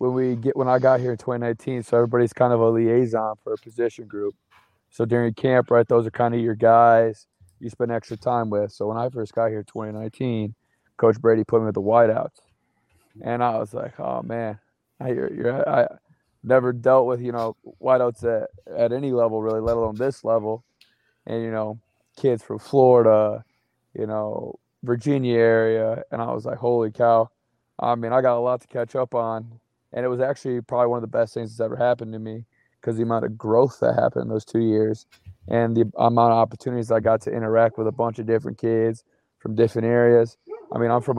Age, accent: 20-39, American